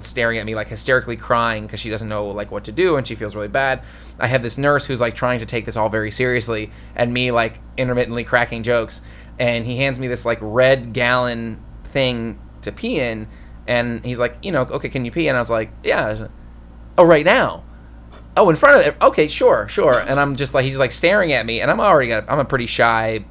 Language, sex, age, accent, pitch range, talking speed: English, male, 20-39, American, 100-125 Hz, 235 wpm